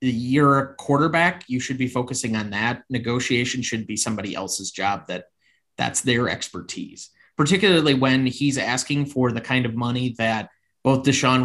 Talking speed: 160 wpm